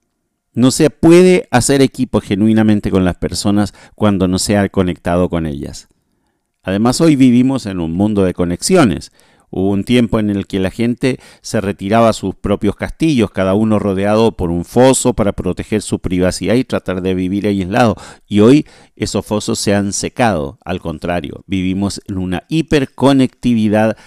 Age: 40-59